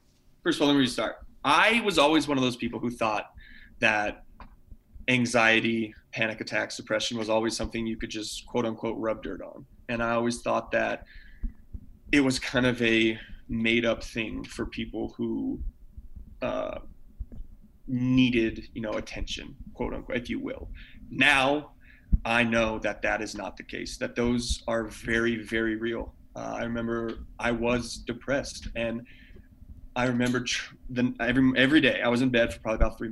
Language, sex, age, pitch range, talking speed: English, male, 20-39, 110-120 Hz, 170 wpm